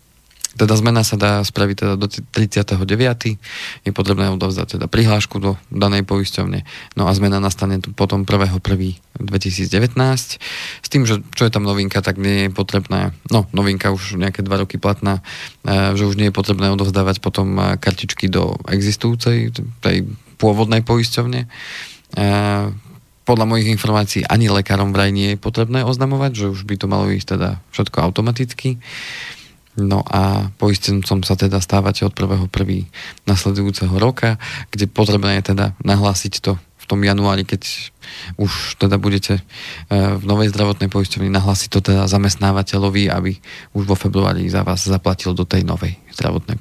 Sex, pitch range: male, 95-105 Hz